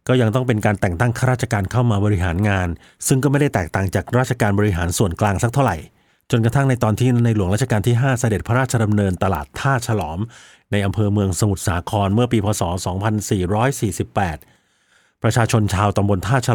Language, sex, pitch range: Thai, male, 100-120 Hz